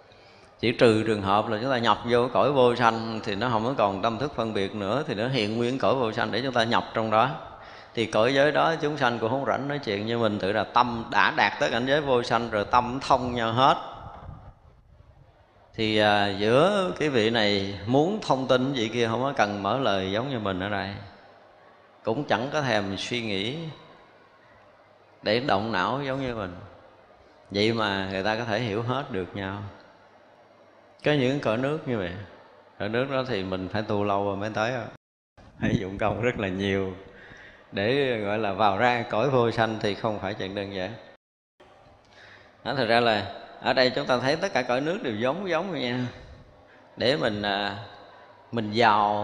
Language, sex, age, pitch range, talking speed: Vietnamese, male, 20-39, 100-125 Hz, 200 wpm